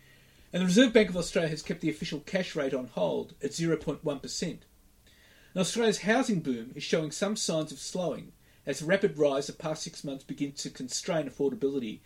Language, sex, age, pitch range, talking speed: English, male, 40-59, 135-185 Hz, 185 wpm